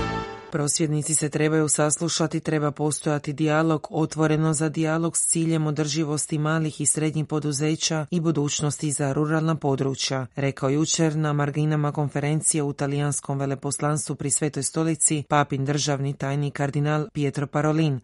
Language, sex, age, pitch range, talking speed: Croatian, female, 30-49, 145-165 Hz, 130 wpm